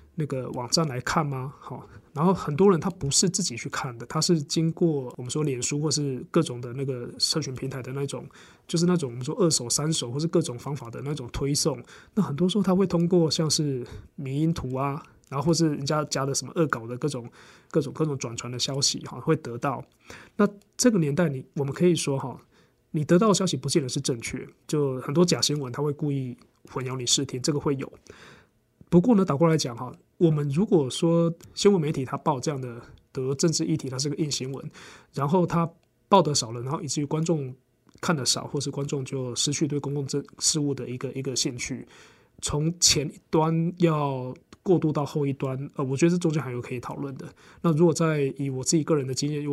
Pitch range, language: 130-165 Hz, Chinese